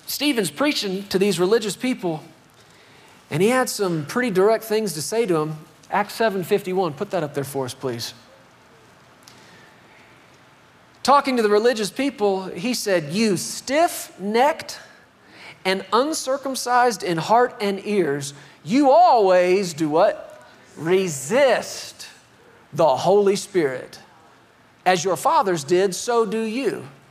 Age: 40-59